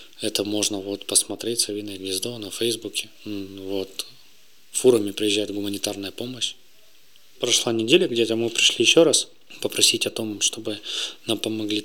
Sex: male